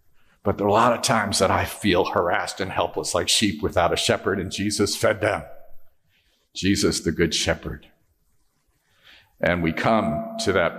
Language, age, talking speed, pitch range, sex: English, 50-69, 170 wpm, 105-125 Hz, male